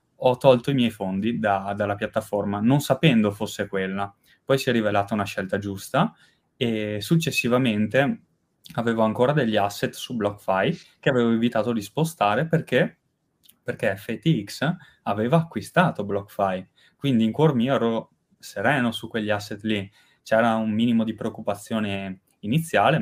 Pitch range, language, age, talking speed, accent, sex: 100-120 Hz, Italian, 20-39, 140 wpm, native, male